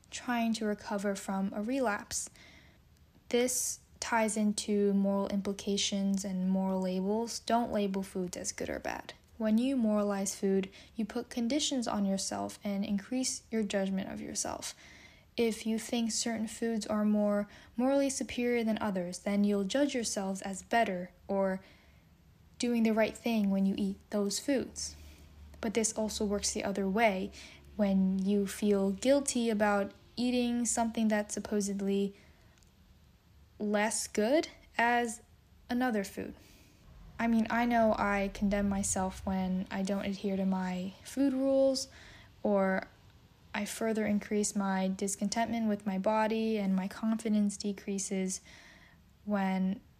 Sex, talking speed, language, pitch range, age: female, 135 wpm, English, 195-225 Hz, 10-29